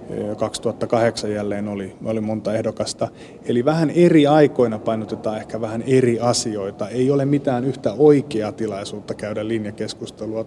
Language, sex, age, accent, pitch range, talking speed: Finnish, male, 30-49, native, 110-130 Hz, 130 wpm